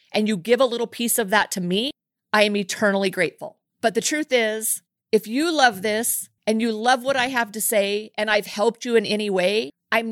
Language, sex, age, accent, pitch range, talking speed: English, female, 40-59, American, 210-255 Hz, 225 wpm